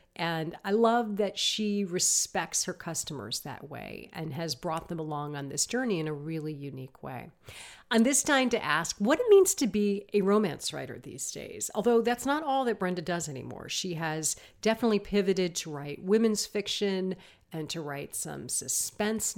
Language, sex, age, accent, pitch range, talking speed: English, female, 50-69, American, 155-215 Hz, 185 wpm